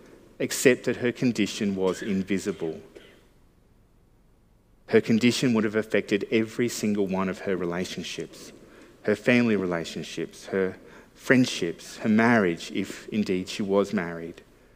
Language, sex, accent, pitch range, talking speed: English, male, Australian, 95-115 Hz, 120 wpm